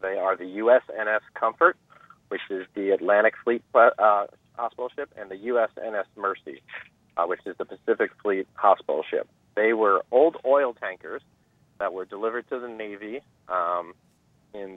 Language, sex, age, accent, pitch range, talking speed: English, male, 40-59, American, 100-120 Hz, 155 wpm